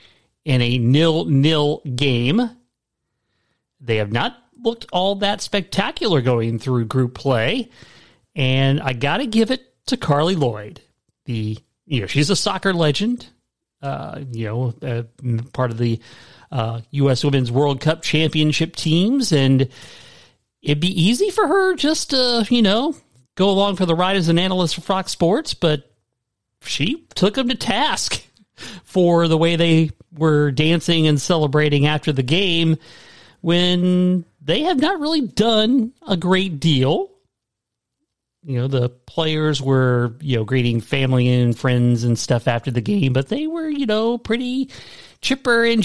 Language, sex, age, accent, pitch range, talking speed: English, male, 40-59, American, 125-195 Hz, 150 wpm